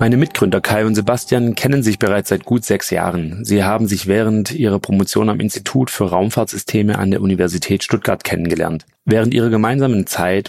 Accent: German